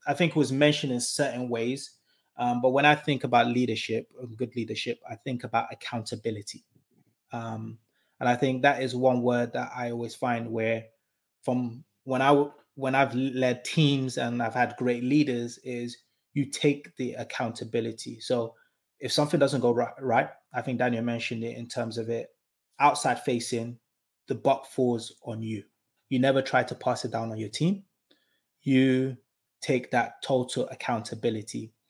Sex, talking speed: male, 165 wpm